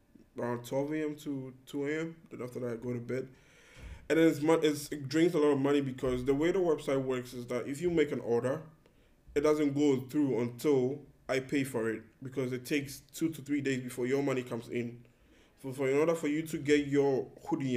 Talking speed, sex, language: 225 wpm, male, English